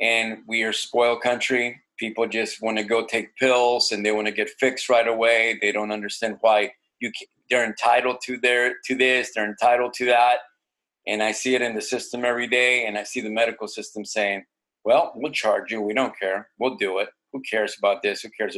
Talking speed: 215 wpm